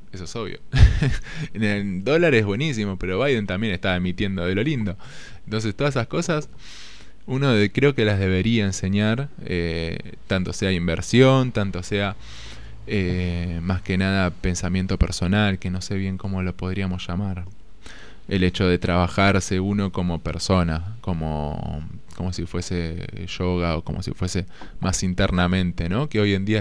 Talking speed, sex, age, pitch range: 160 wpm, male, 20-39, 90-105 Hz